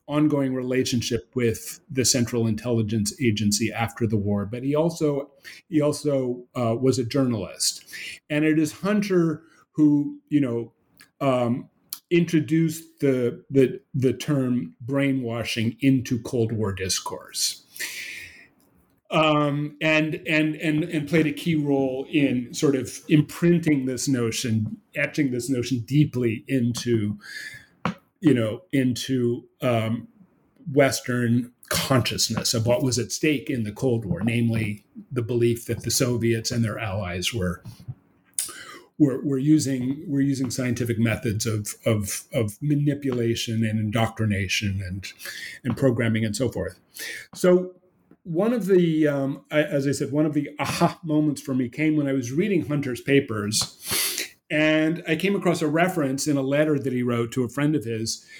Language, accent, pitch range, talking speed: English, American, 115-150 Hz, 145 wpm